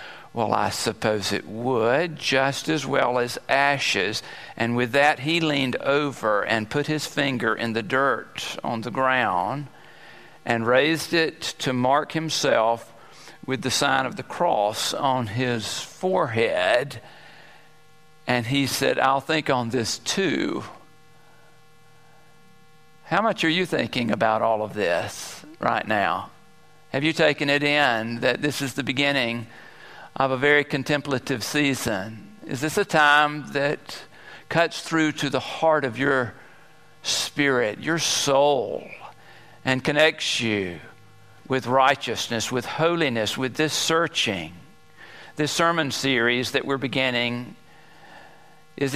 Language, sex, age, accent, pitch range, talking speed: English, male, 50-69, American, 125-155 Hz, 135 wpm